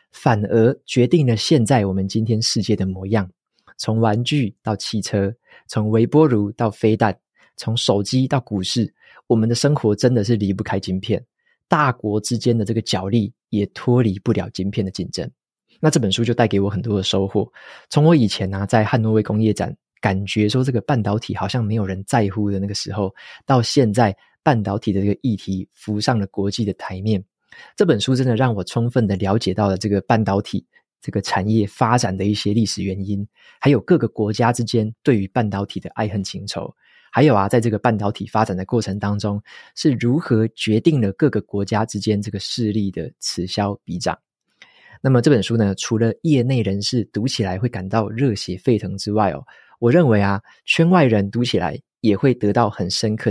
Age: 20-39